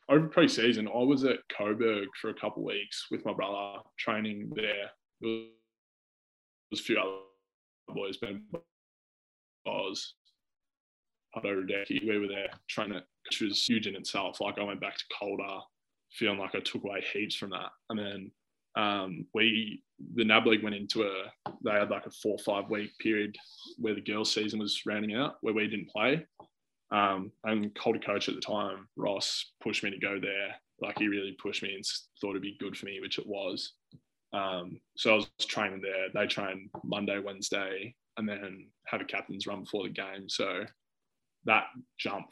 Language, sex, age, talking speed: English, male, 20-39, 190 wpm